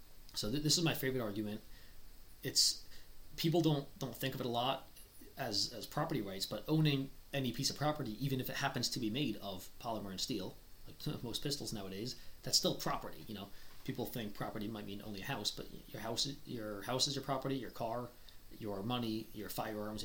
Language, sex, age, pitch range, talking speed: English, male, 30-49, 100-130 Hz, 205 wpm